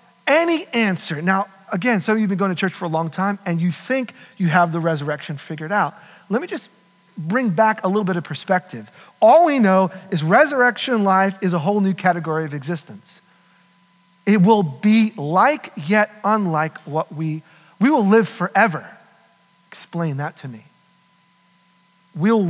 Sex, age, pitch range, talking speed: male, 40-59, 170-210 Hz, 175 wpm